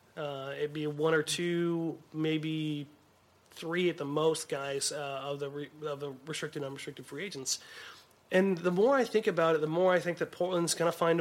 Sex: male